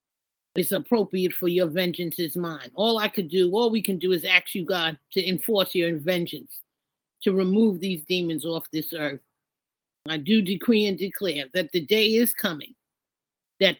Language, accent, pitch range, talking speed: English, American, 170-215 Hz, 180 wpm